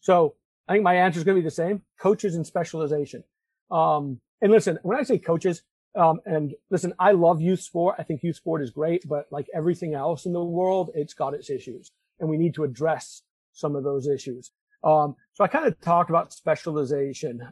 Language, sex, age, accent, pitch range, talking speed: English, male, 40-59, American, 145-175 Hz, 210 wpm